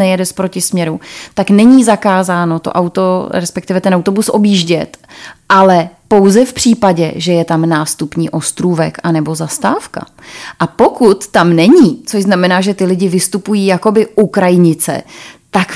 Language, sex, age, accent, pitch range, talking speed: Czech, female, 30-49, native, 170-205 Hz, 140 wpm